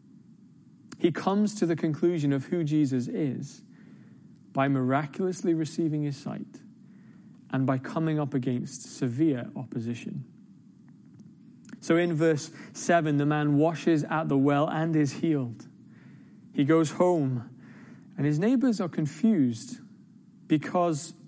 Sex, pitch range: male, 140-200 Hz